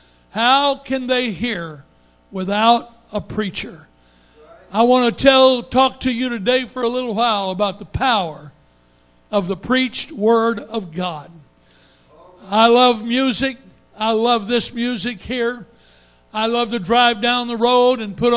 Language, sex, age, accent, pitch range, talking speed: English, male, 60-79, American, 210-255 Hz, 145 wpm